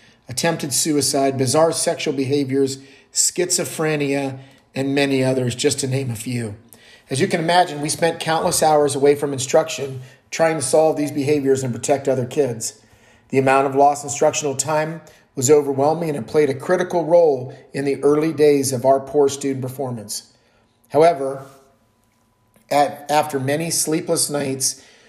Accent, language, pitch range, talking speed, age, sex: American, English, 130-155 Hz, 150 wpm, 40-59, male